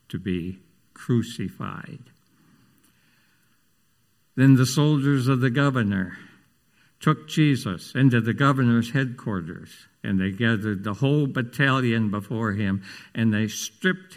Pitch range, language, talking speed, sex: 95-150 Hz, English, 110 wpm, male